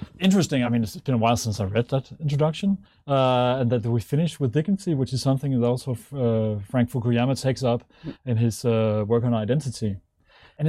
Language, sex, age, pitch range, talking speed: English, male, 30-49, 110-130 Hz, 200 wpm